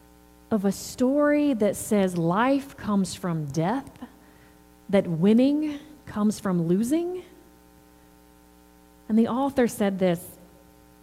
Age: 40-59